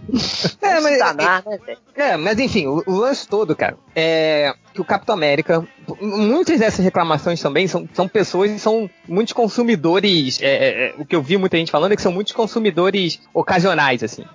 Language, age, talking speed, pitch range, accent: Portuguese, 20-39, 175 wpm, 155-210 Hz, Brazilian